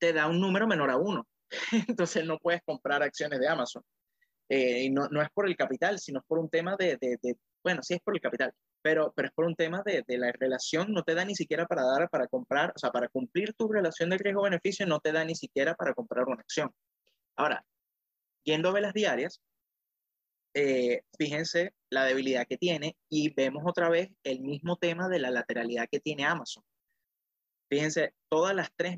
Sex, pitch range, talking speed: male, 130-175 Hz, 205 wpm